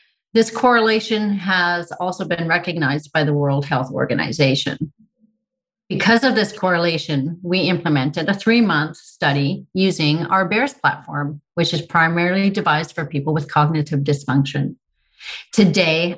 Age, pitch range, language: 40-59, 160-195 Hz, English